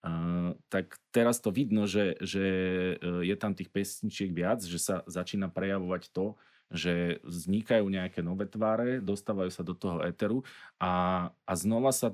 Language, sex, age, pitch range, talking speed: Slovak, male, 30-49, 85-100 Hz, 155 wpm